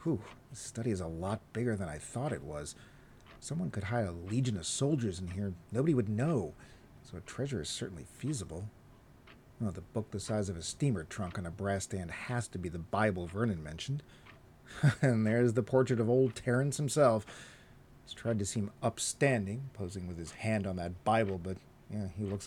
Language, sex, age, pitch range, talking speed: English, male, 40-59, 95-130 Hz, 200 wpm